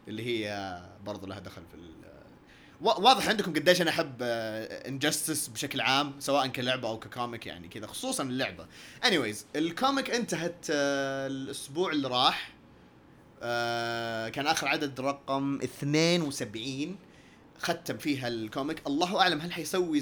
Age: 30-49